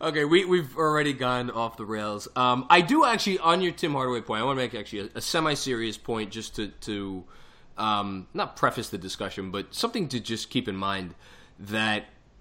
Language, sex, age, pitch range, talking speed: English, male, 20-39, 100-130 Hz, 205 wpm